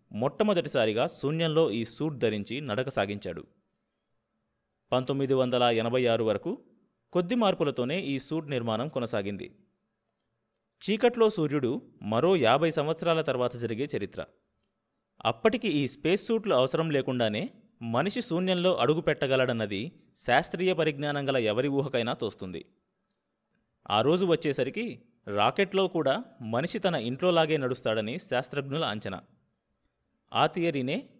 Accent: native